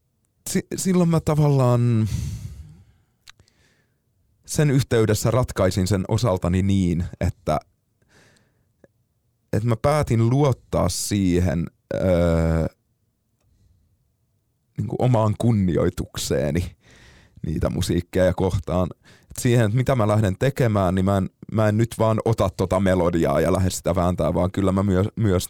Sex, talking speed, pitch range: male, 115 wpm, 90-115 Hz